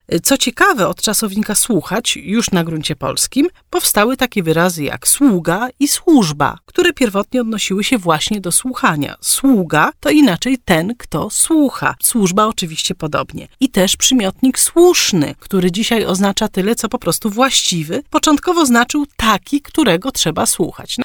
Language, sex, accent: Polish, female, native